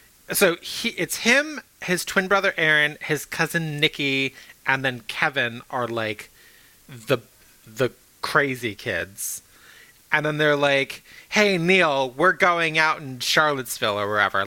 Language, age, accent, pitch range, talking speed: English, 30-49, American, 130-170 Hz, 135 wpm